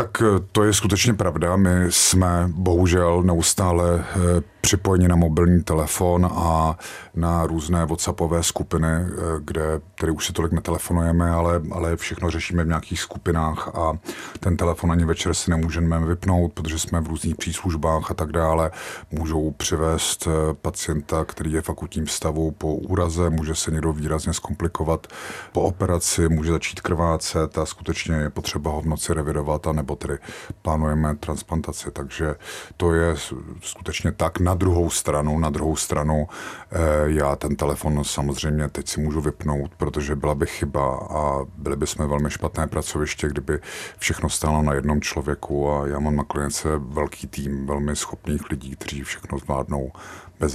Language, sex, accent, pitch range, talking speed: Czech, male, native, 75-90 Hz, 155 wpm